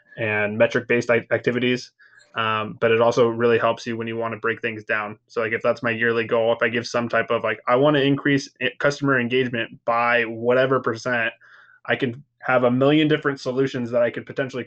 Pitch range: 110-125 Hz